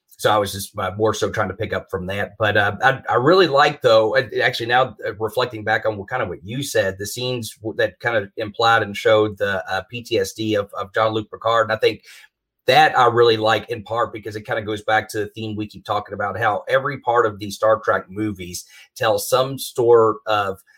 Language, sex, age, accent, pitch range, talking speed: English, male, 30-49, American, 100-115 Hz, 230 wpm